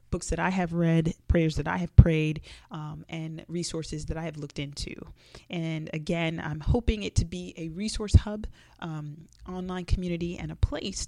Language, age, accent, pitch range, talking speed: English, 30-49, American, 155-180 Hz, 185 wpm